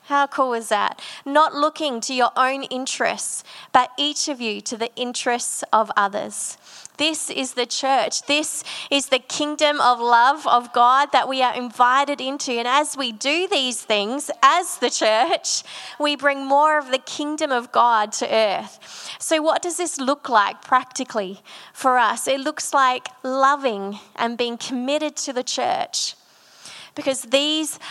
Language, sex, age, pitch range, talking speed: English, female, 20-39, 245-285 Hz, 165 wpm